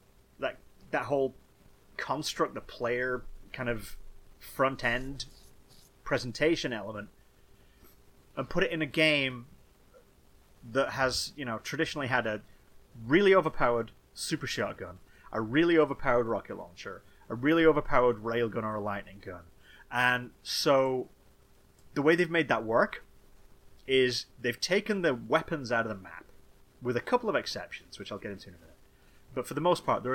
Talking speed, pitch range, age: 150 wpm, 105-145 Hz, 30-49